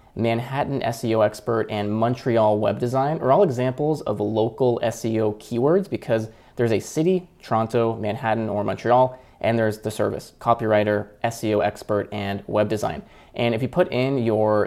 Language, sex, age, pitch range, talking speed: English, male, 20-39, 110-130 Hz, 155 wpm